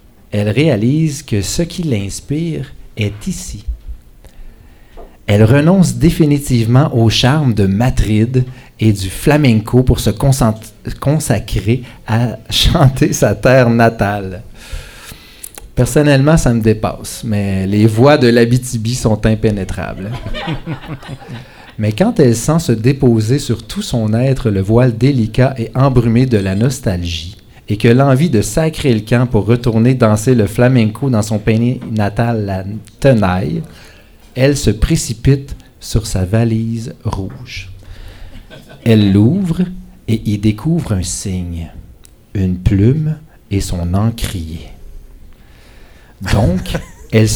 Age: 40-59